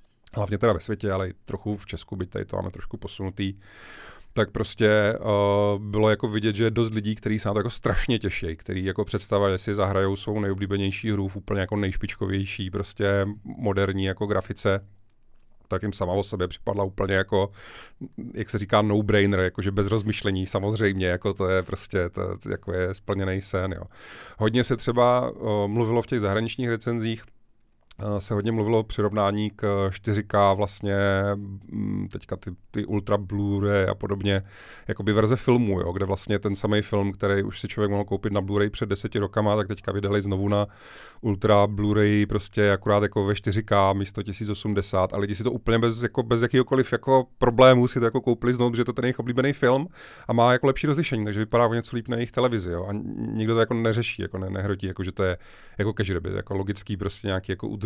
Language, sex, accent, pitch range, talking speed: Czech, male, native, 100-110 Hz, 195 wpm